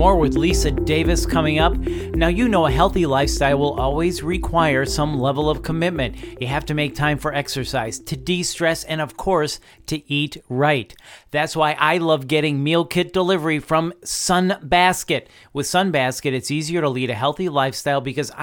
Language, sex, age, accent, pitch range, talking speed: English, male, 40-59, American, 140-170 Hz, 180 wpm